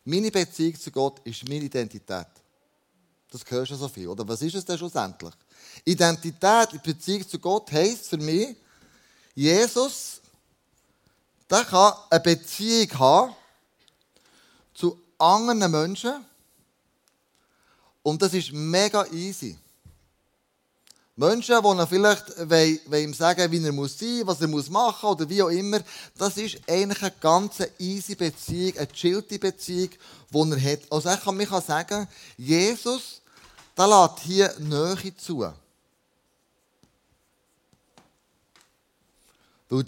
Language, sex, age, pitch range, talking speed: German, male, 30-49, 150-195 Hz, 125 wpm